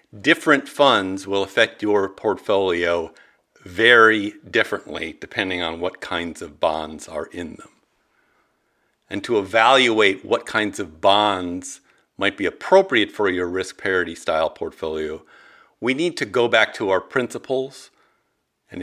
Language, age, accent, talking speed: English, 50-69, American, 135 wpm